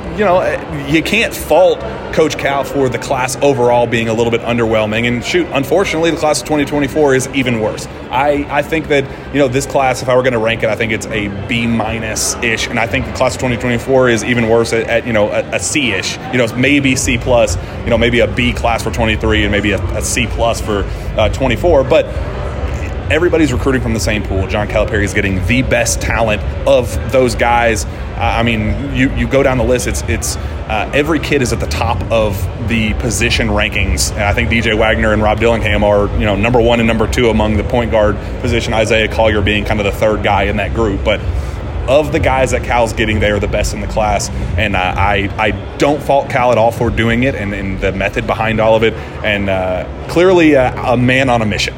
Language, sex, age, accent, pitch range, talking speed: English, male, 30-49, American, 105-125 Hz, 235 wpm